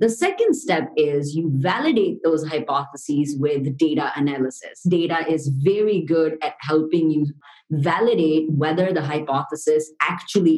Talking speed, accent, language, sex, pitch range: 130 wpm, Indian, English, female, 155-195 Hz